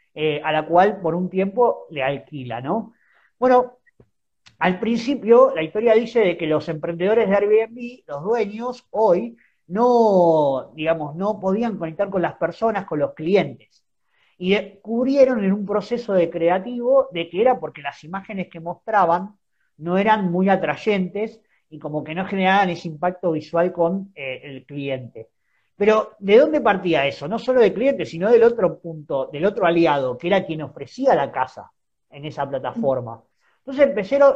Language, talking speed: Spanish, 165 wpm